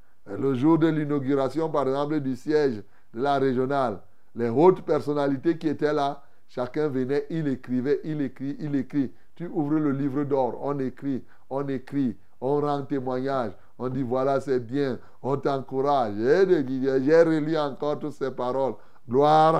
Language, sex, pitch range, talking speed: French, male, 130-190 Hz, 155 wpm